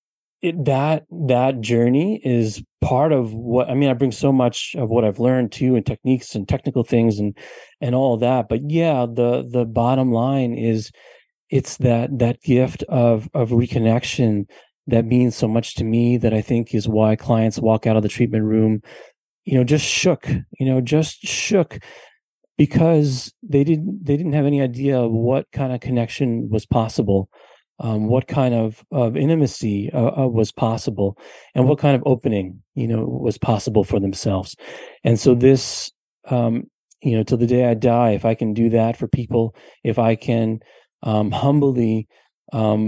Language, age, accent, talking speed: English, 30-49, American, 180 wpm